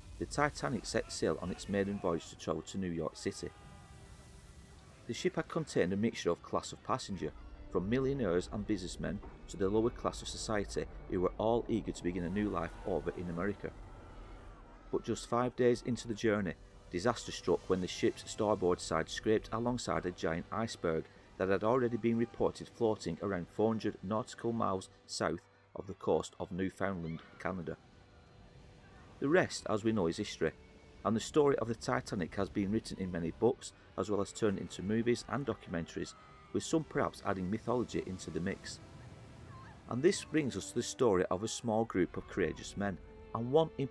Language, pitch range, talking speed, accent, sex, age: English, 85-115 Hz, 185 wpm, British, male, 40-59